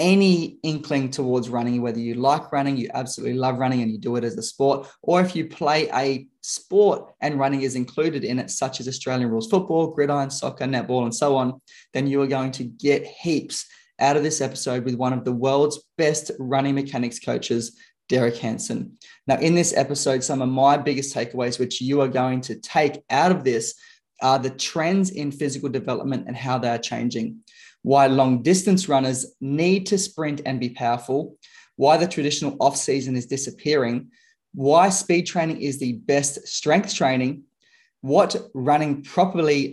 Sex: male